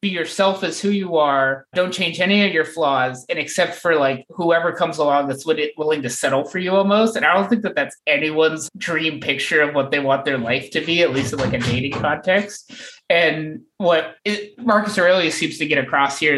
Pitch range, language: 135-170 Hz, English